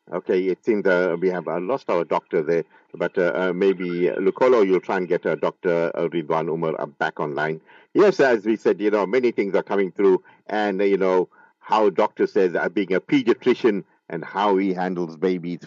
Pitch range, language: 85-105 Hz, English